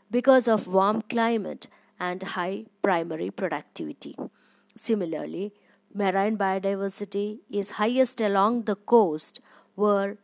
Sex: female